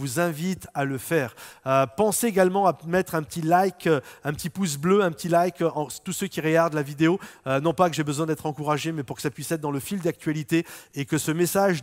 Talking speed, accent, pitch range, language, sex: 250 wpm, French, 140-175 Hz, French, male